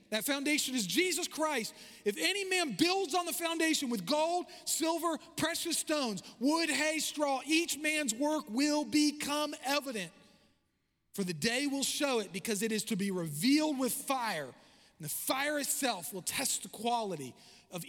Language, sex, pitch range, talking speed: English, male, 220-310 Hz, 165 wpm